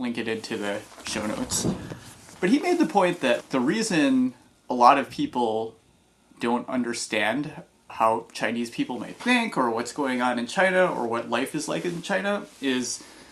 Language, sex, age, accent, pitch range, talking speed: English, male, 30-49, American, 115-185 Hz, 175 wpm